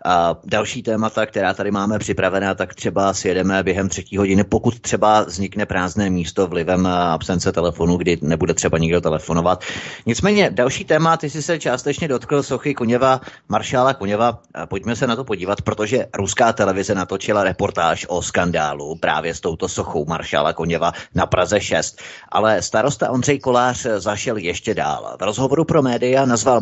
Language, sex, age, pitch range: Czech, male, 30-49, 95-125 Hz